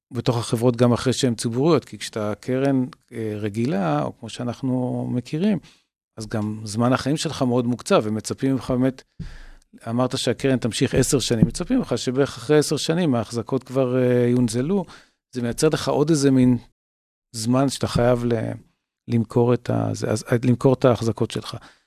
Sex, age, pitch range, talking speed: male, 40-59, 115-135 Hz, 155 wpm